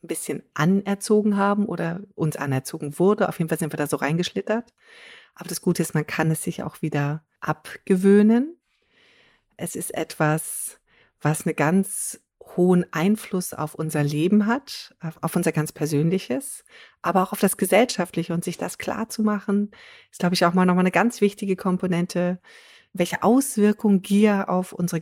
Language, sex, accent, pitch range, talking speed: German, female, German, 165-210 Hz, 170 wpm